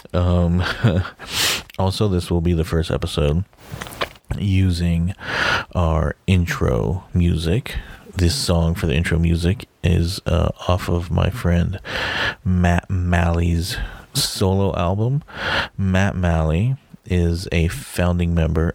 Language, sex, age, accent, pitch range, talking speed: English, male, 30-49, American, 85-100 Hz, 110 wpm